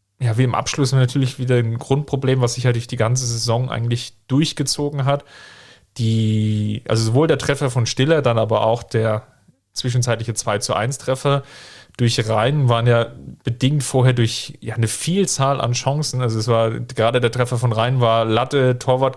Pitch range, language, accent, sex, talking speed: 115-130 Hz, German, German, male, 180 wpm